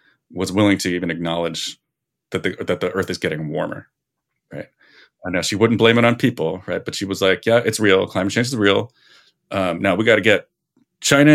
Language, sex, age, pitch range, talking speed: English, male, 30-49, 85-115 Hz, 210 wpm